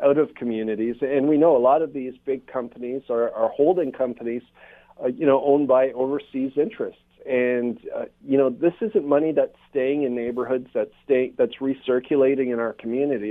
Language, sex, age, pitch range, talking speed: English, male, 40-59, 115-140 Hz, 185 wpm